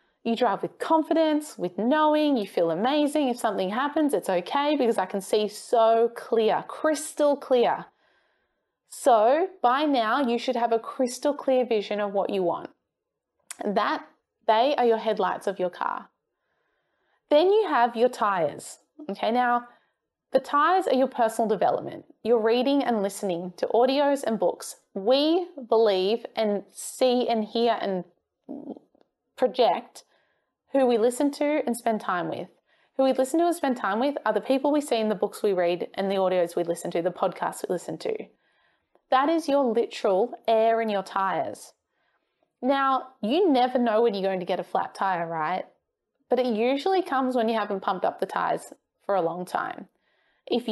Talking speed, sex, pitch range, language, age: 175 wpm, female, 215-285 Hz, English, 20-39